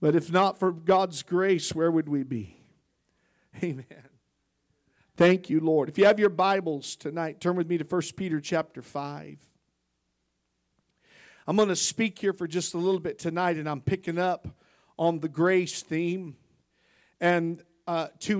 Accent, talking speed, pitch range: American, 165 wpm, 165-195 Hz